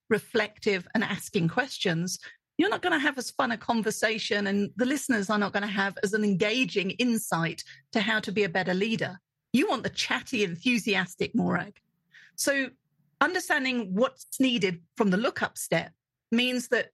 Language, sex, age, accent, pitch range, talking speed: English, female, 40-59, British, 195-255 Hz, 170 wpm